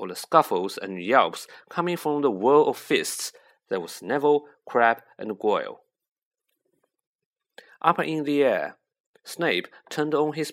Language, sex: Chinese, male